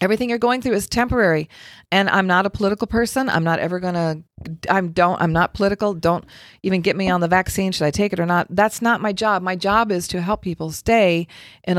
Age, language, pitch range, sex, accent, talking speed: 40-59, English, 170-215 Hz, female, American, 240 wpm